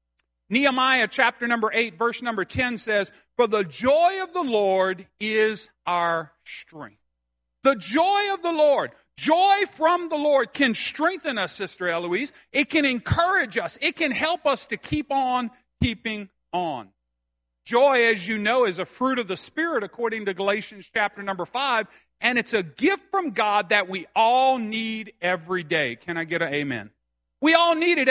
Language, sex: English, male